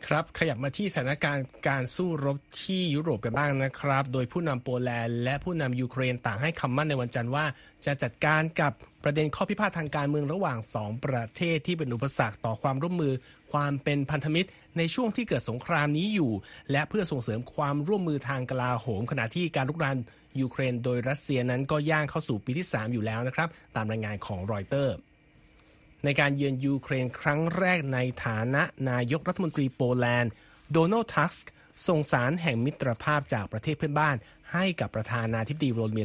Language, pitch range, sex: Thai, 125-155 Hz, male